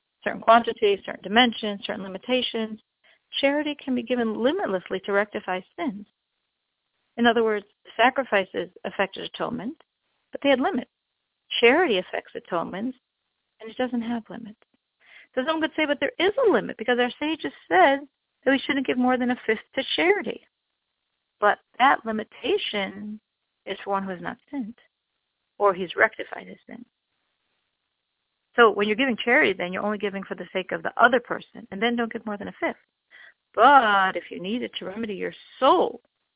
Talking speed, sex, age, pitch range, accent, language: 170 wpm, female, 40-59, 210-275 Hz, American, English